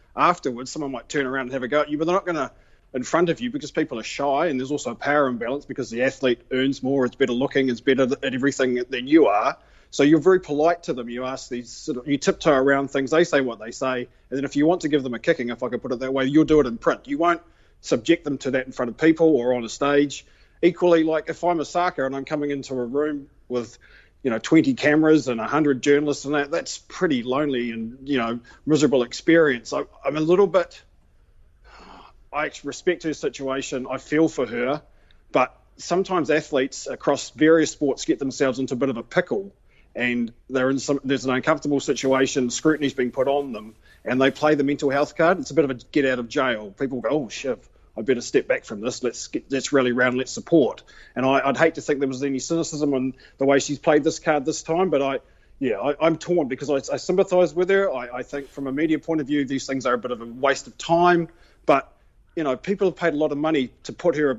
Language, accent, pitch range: English, Australian, 130-155 Hz